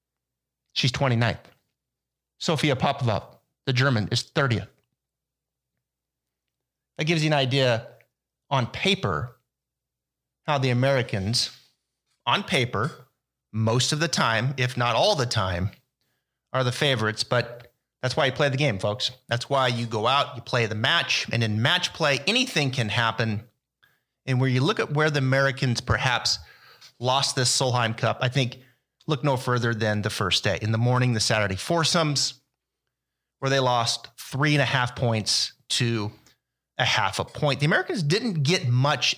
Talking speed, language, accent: 155 wpm, English, American